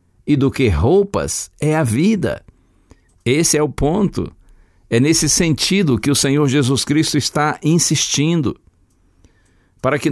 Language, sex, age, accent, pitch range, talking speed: Portuguese, male, 60-79, Brazilian, 95-140 Hz, 135 wpm